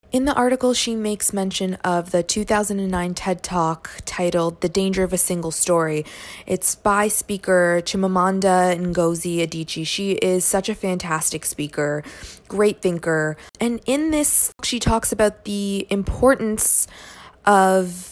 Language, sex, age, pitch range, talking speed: English, female, 20-39, 175-220 Hz, 135 wpm